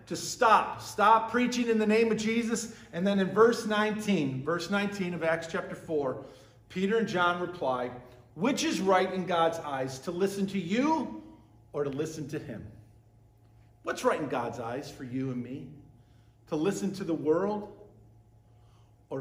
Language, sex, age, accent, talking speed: English, male, 50-69, American, 170 wpm